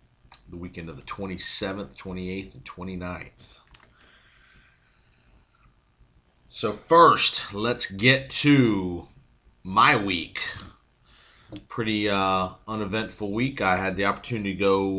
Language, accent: English, American